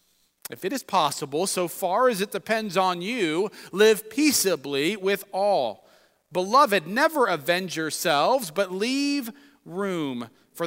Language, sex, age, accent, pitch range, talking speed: English, male, 40-59, American, 150-200 Hz, 130 wpm